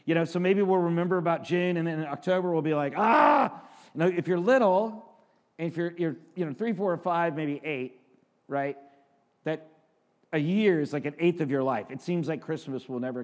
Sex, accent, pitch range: male, American, 145-185 Hz